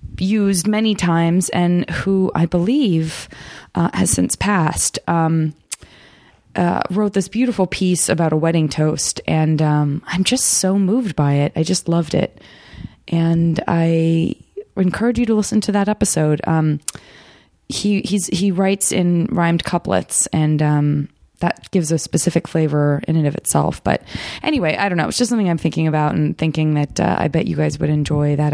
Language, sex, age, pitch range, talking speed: English, female, 20-39, 155-195 Hz, 175 wpm